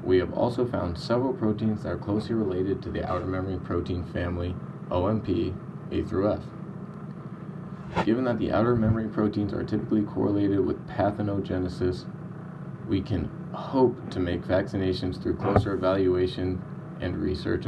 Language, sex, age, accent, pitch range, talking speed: English, male, 20-39, American, 90-120 Hz, 145 wpm